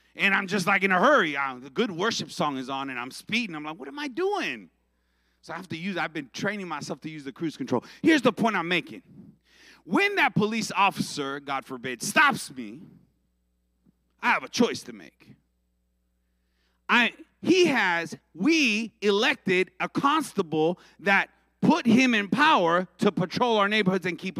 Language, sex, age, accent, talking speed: English, male, 30-49, American, 180 wpm